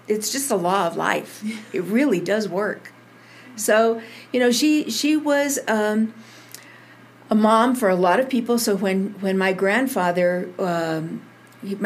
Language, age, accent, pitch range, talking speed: English, 50-69, American, 175-220 Hz, 150 wpm